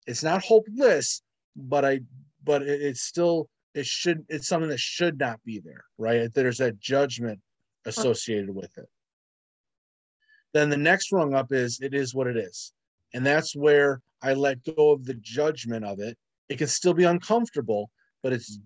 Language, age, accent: English, 30-49, American